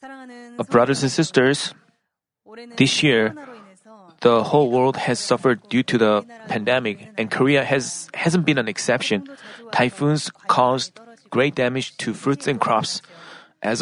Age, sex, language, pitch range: 30-49, male, Korean, 125-175 Hz